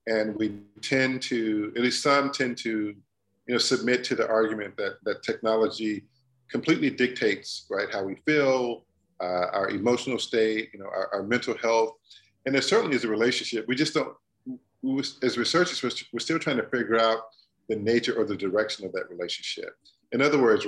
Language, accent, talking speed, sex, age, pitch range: English, American, 185 wpm, male, 40-59, 105-125 Hz